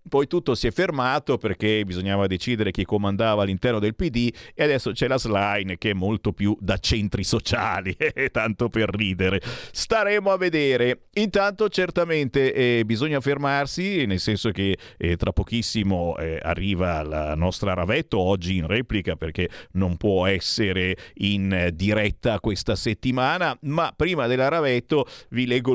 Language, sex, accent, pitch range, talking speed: Italian, male, native, 105-155 Hz, 150 wpm